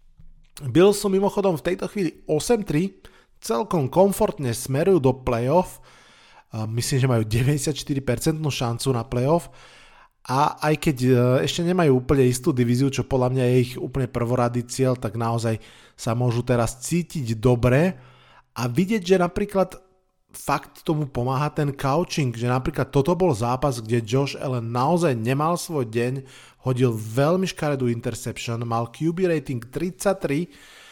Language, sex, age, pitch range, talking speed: Slovak, male, 20-39, 125-160 Hz, 140 wpm